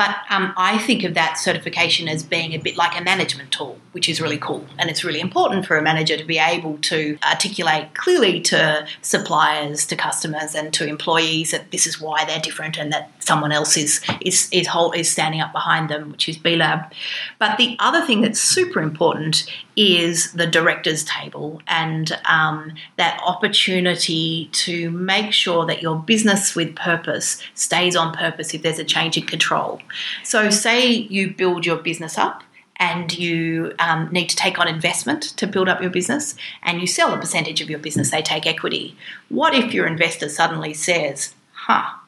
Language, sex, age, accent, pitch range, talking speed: English, female, 30-49, Australian, 155-180 Hz, 185 wpm